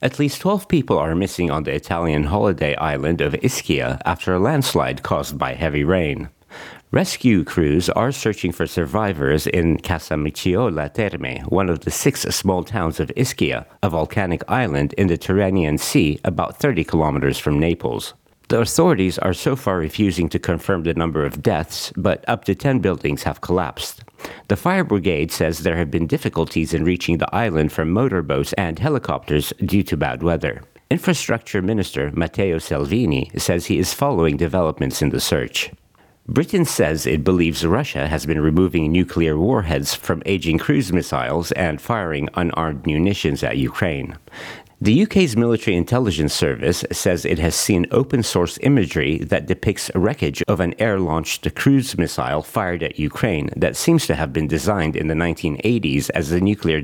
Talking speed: 165 wpm